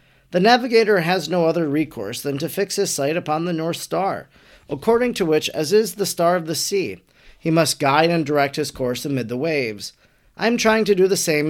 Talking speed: 220 wpm